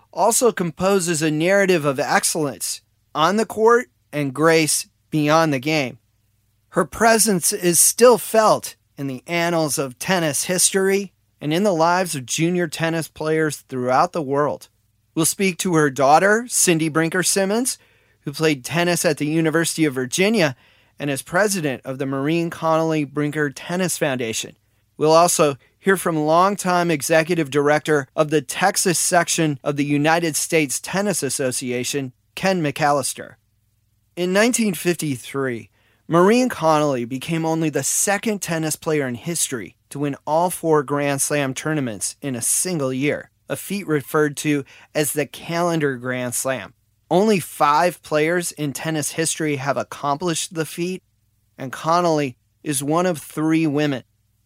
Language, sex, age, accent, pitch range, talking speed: English, male, 30-49, American, 135-175 Hz, 145 wpm